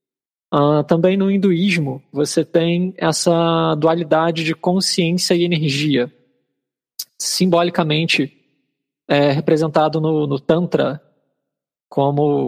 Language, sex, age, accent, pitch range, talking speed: Portuguese, male, 20-39, Brazilian, 150-180 Hz, 85 wpm